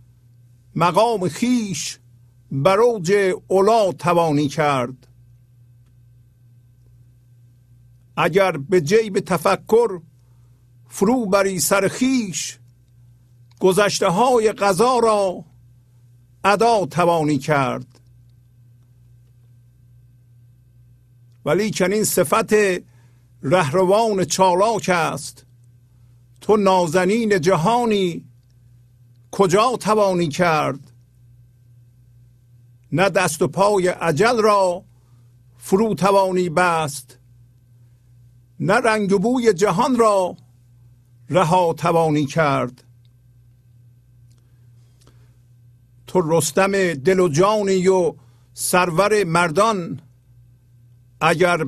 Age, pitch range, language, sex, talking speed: 50-69, 120-185 Hz, Persian, male, 70 wpm